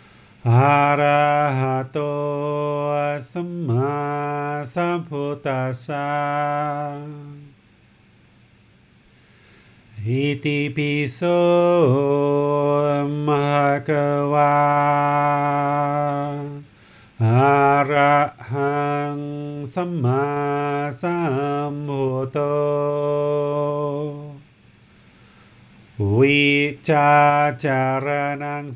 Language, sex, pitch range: English, male, 140-145 Hz